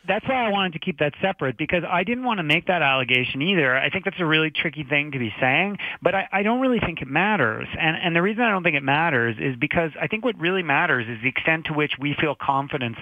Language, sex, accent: English, male, American